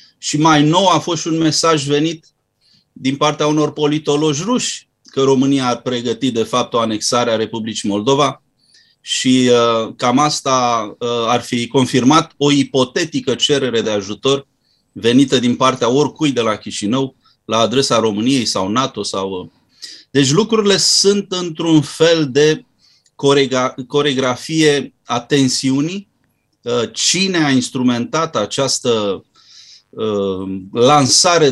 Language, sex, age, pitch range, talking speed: Romanian, male, 30-49, 120-145 Hz, 130 wpm